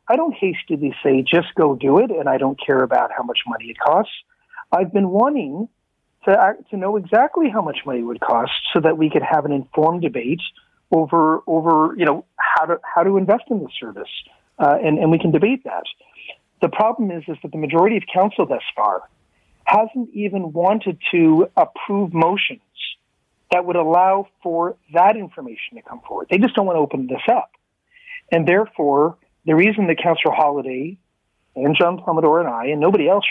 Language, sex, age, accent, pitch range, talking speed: English, male, 40-59, American, 150-200 Hz, 195 wpm